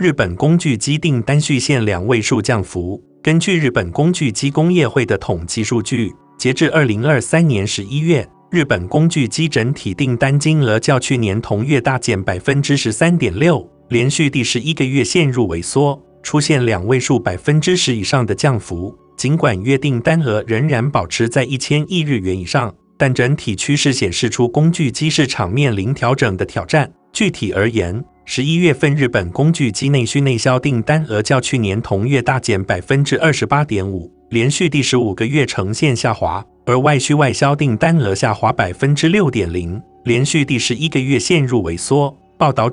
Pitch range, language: 115-150 Hz, Chinese